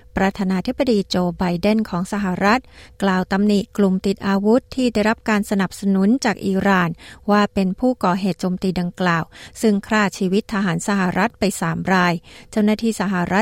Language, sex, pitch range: Thai, female, 185-220 Hz